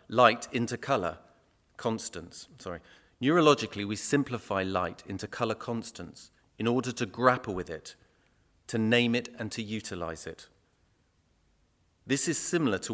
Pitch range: 100-125 Hz